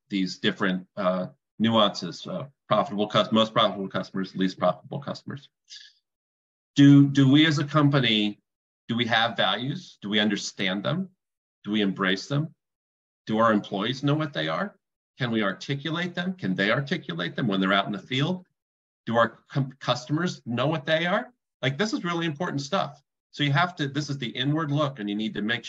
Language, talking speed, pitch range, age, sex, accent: English, 185 wpm, 105-140 Hz, 40-59, male, American